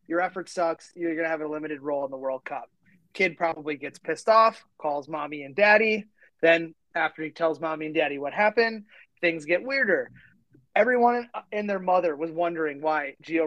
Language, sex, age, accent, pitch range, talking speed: English, male, 30-49, American, 155-205 Hz, 190 wpm